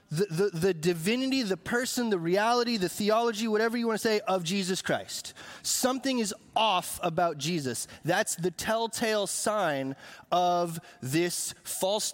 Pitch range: 150-195 Hz